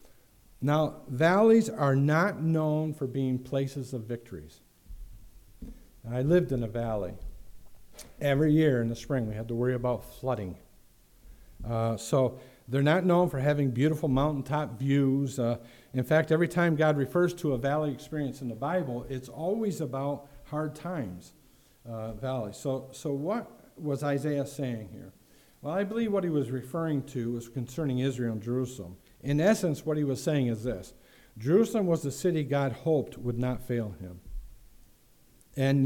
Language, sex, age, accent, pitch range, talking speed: English, male, 50-69, American, 120-150 Hz, 160 wpm